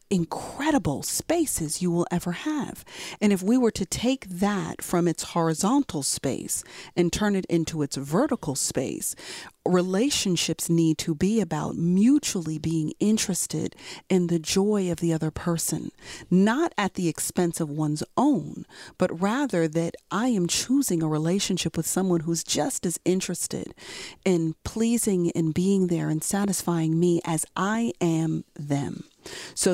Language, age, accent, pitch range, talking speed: English, 40-59, American, 160-200 Hz, 145 wpm